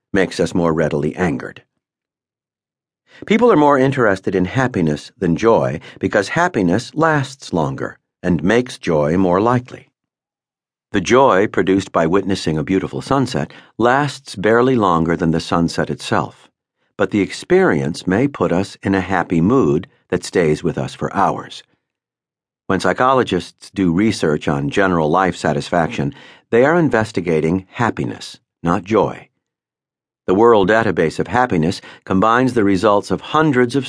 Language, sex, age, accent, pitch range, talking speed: English, male, 50-69, American, 80-120 Hz, 140 wpm